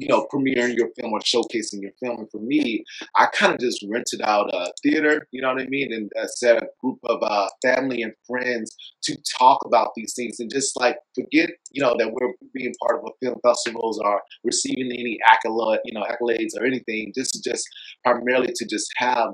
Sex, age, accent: male, 30-49, American